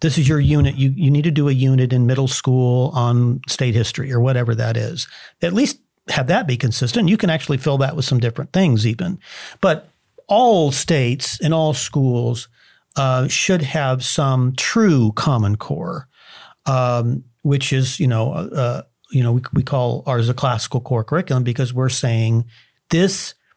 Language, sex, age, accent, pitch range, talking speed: English, male, 50-69, American, 125-150 Hz, 180 wpm